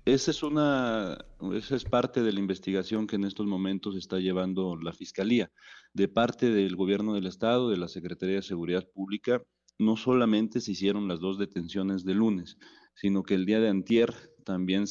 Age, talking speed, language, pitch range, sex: 40-59, 180 wpm, Spanish, 90-105 Hz, male